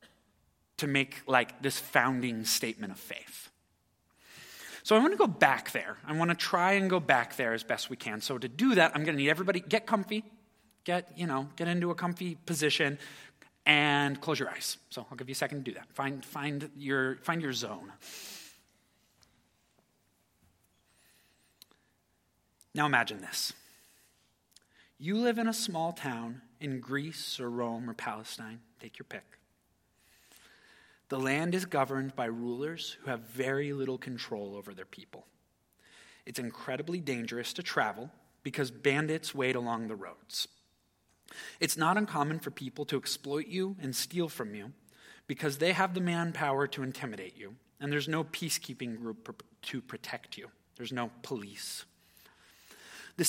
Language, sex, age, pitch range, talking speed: English, male, 30-49, 125-170 Hz, 160 wpm